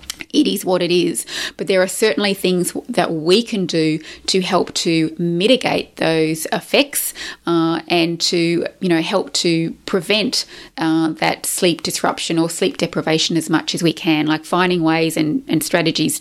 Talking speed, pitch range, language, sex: 170 wpm, 160-185 Hz, English, female